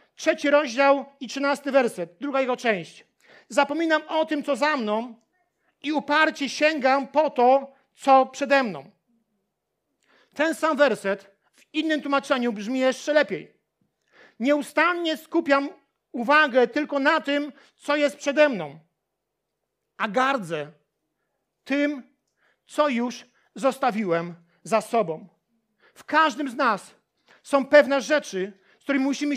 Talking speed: 120 wpm